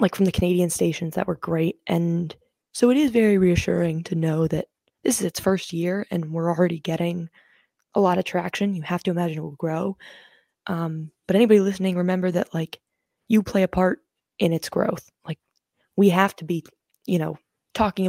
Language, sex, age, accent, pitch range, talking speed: English, female, 20-39, American, 165-190 Hz, 195 wpm